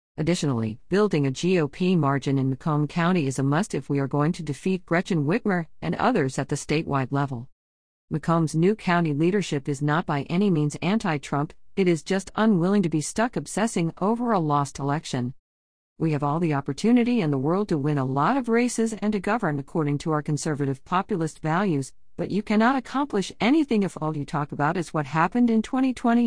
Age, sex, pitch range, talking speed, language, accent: 50-69, female, 145-200 Hz, 195 wpm, English, American